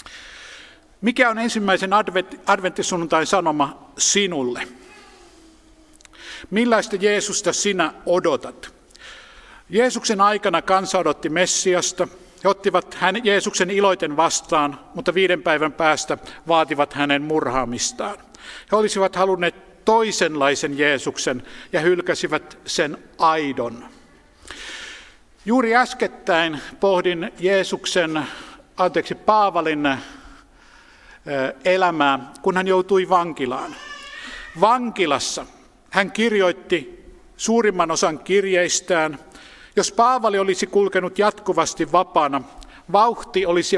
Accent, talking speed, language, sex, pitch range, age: native, 85 wpm, Finnish, male, 160-200 Hz, 50-69